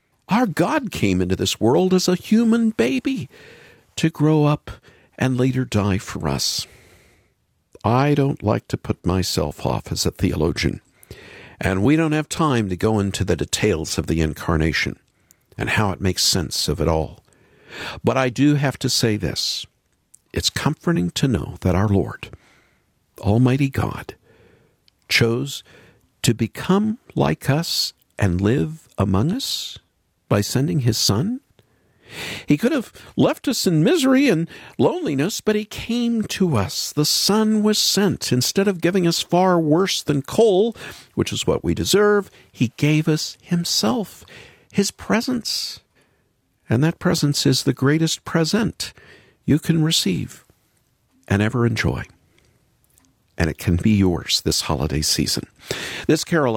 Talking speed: 145 wpm